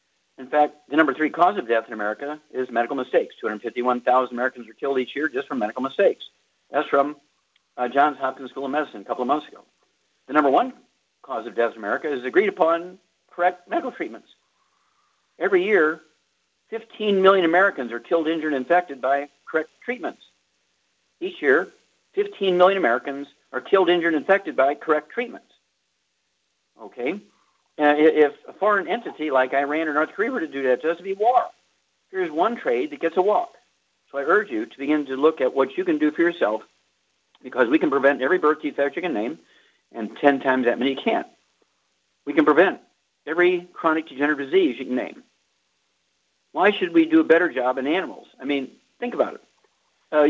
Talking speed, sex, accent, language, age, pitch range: 190 wpm, male, American, English, 50-69, 130-195 Hz